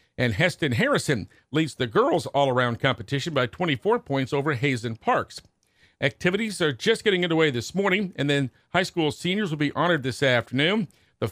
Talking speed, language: 170 wpm, English